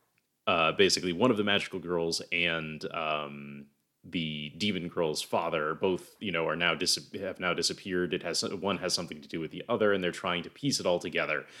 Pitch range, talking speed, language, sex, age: 80-95 Hz, 200 wpm, English, male, 30-49